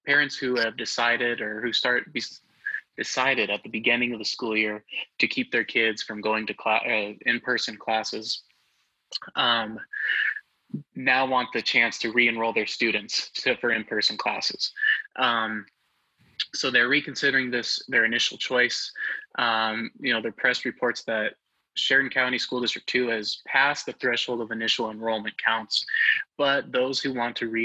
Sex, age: male, 20-39